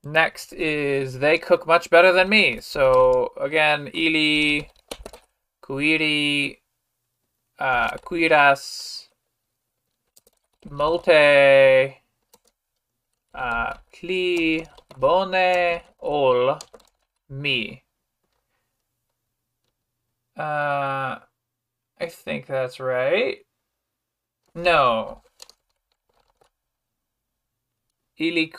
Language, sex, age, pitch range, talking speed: English, male, 20-39, 120-165 Hz, 55 wpm